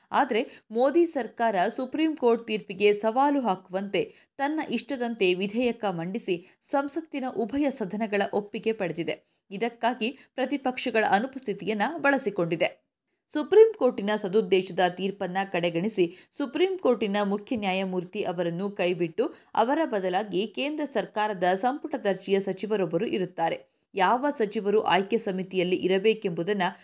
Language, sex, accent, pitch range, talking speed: Kannada, female, native, 190-260 Hz, 100 wpm